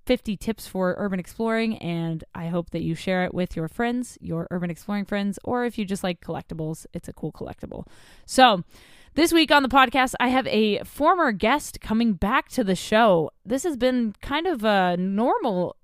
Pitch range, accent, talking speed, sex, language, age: 185-245 Hz, American, 200 wpm, female, English, 20-39